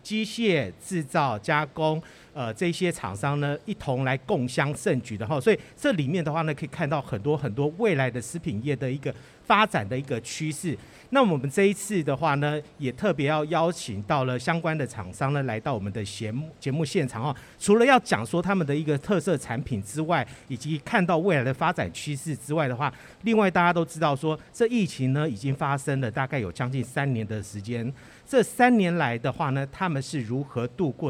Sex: male